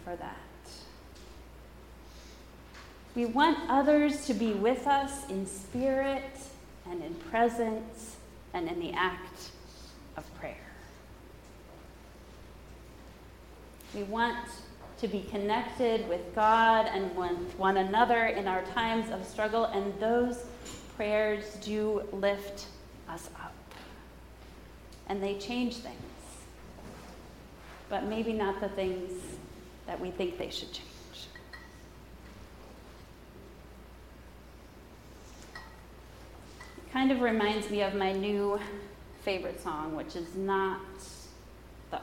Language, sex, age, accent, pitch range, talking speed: English, female, 30-49, American, 180-235 Hz, 100 wpm